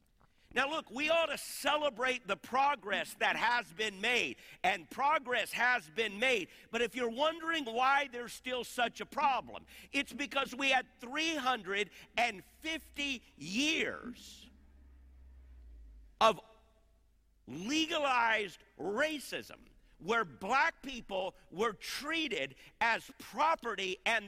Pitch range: 200-275 Hz